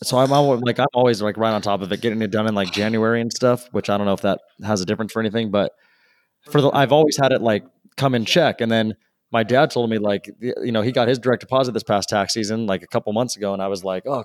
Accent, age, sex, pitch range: American, 20-39, male, 105-125 Hz